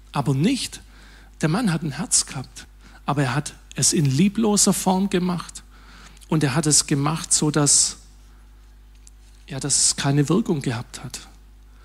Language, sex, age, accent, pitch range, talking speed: German, male, 50-69, German, 145-180 Hz, 135 wpm